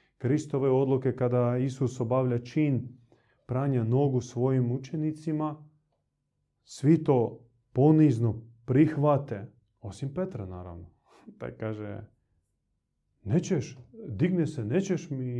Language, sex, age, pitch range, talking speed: Croatian, male, 30-49, 115-145 Hz, 95 wpm